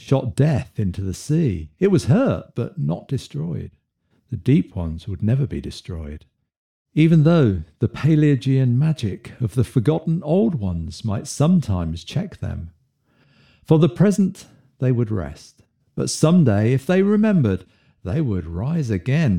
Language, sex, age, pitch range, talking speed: English, male, 60-79, 95-145 Hz, 145 wpm